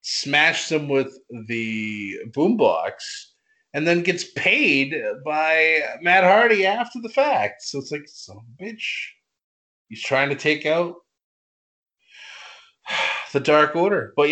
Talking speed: 135 wpm